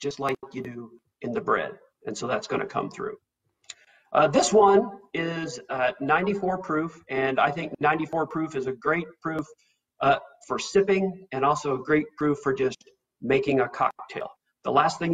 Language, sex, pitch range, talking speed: English, male, 130-170 Hz, 180 wpm